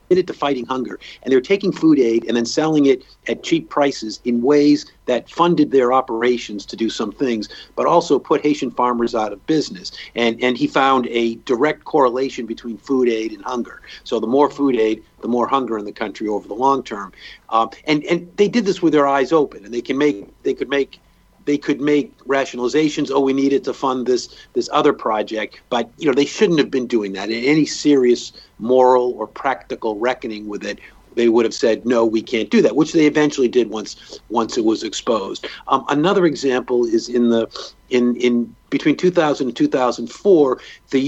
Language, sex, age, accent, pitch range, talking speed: English, male, 50-69, American, 115-150 Hz, 205 wpm